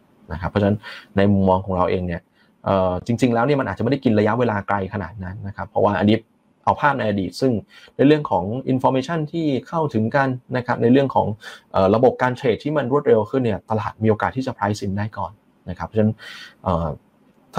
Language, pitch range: Thai, 95-120 Hz